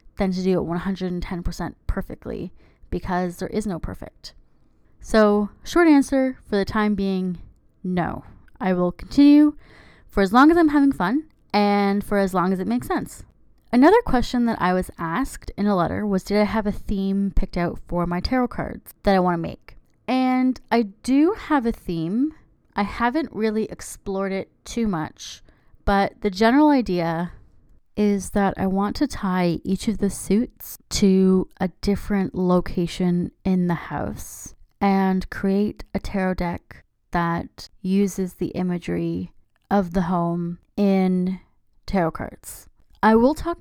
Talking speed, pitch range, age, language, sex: 160 wpm, 180-230 Hz, 20-39, English, female